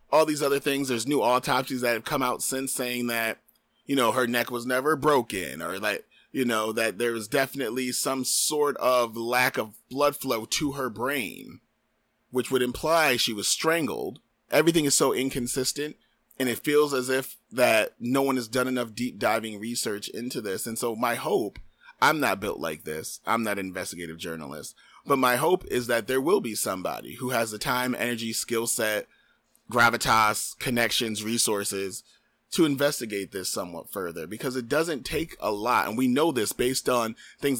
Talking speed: 185 wpm